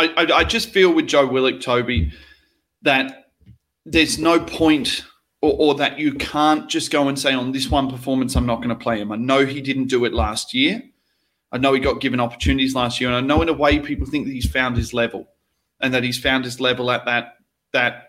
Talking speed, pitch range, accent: 230 wpm, 125-180 Hz, Australian